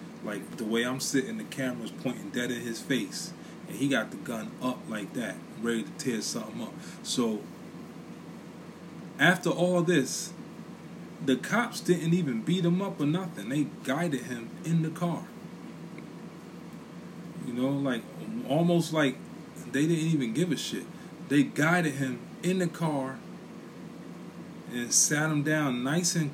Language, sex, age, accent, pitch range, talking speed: English, male, 20-39, American, 135-175 Hz, 155 wpm